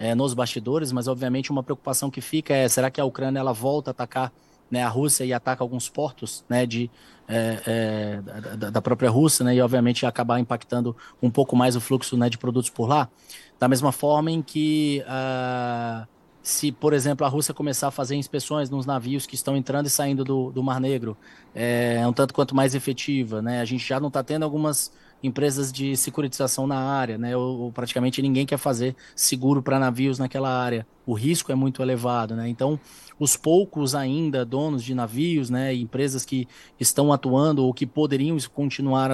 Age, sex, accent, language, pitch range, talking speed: 20-39, male, Brazilian, Portuguese, 125-145 Hz, 185 wpm